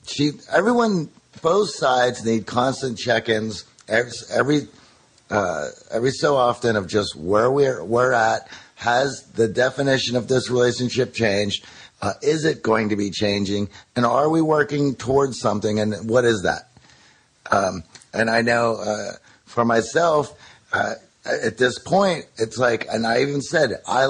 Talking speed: 150 wpm